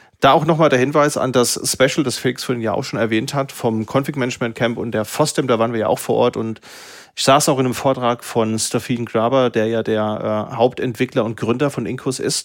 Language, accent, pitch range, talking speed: German, German, 115-135 Hz, 230 wpm